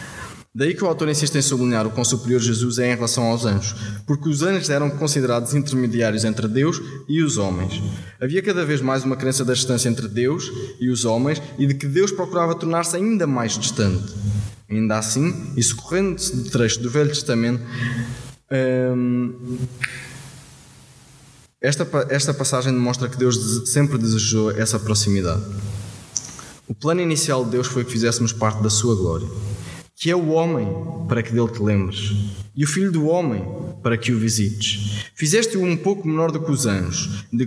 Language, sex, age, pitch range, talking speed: Portuguese, male, 20-39, 110-145 Hz, 170 wpm